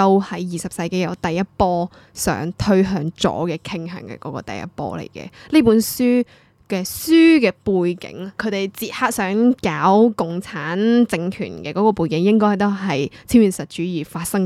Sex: female